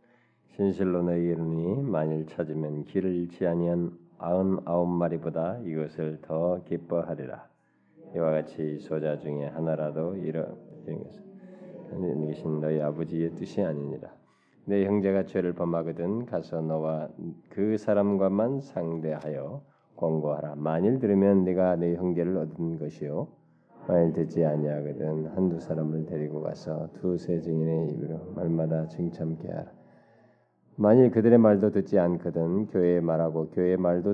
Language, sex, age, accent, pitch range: Korean, male, 20-39, native, 80-95 Hz